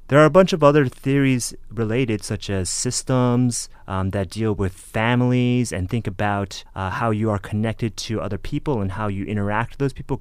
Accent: American